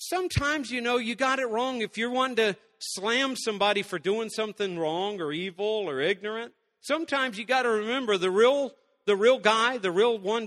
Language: English